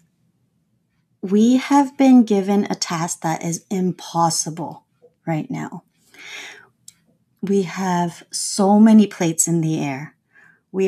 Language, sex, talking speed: English, female, 110 wpm